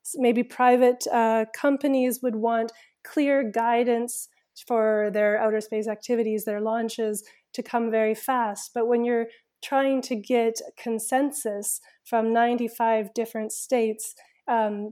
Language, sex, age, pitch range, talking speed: English, female, 20-39, 215-245 Hz, 125 wpm